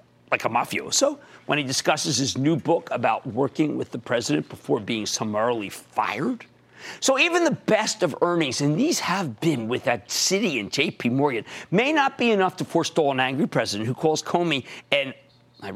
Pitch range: 120-180 Hz